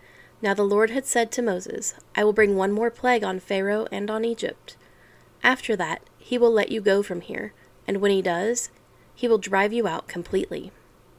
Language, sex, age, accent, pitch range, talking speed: English, female, 30-49, American, 185-225 Hz, 200 wpm